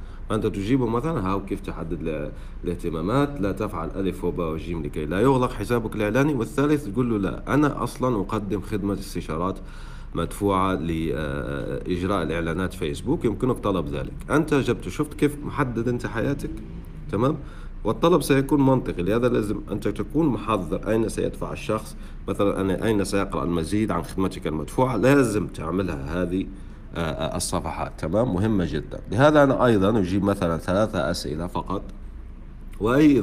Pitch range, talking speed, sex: 85-110 Hz, 135 wpm, male